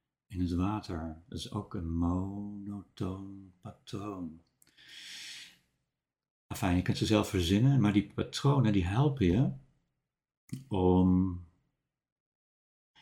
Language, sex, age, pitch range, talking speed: Dutch, male, 60-79, 90-115 Hz, 100 wpm